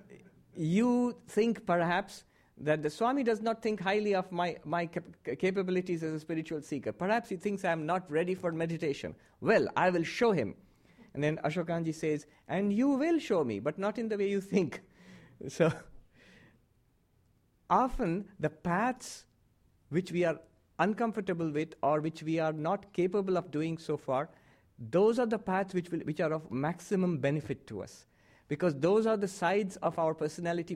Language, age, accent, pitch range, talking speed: English, 50-69, Indian, 125-190 Hz, 175 wpm